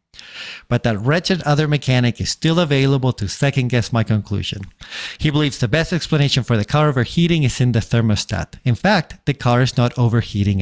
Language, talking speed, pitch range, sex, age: English, 180 wpm, 110-145 Hz, male, 50-69